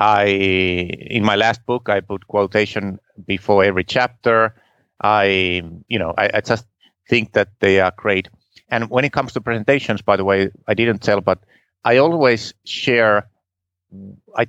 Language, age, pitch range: English, 30-49, 95-115 Hz